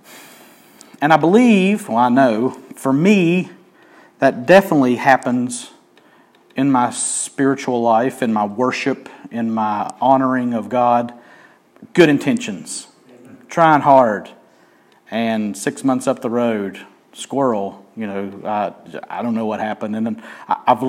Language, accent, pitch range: English, American, 115-165 Hz